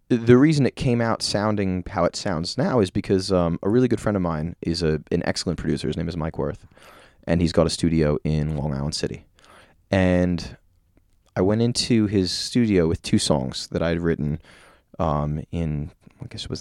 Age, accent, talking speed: 30-49, American, 205 wpm